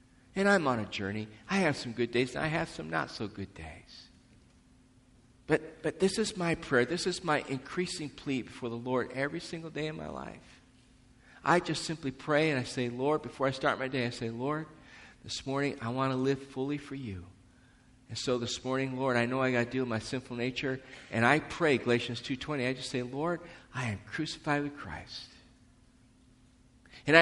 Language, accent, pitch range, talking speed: English, American, 125-155 Hz, 205 wpm